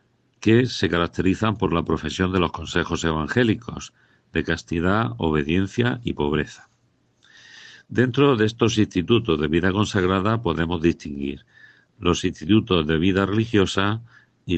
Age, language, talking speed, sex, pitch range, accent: 50-69, Spanish, 125 wpm, male, 80-100 Hz, Spanish